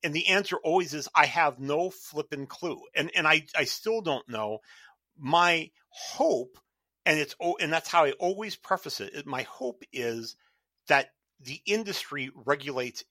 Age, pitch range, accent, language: 40-59, 125-160 Hz, American, English